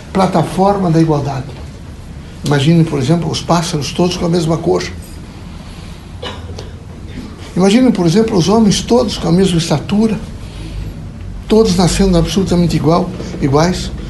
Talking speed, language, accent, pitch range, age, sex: 115 wpm, Portuguese, Brazilian, 115-190 Hz, 60-79, male